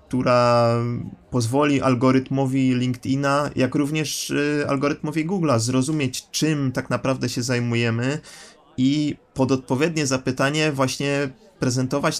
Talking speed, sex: 100 wpm, male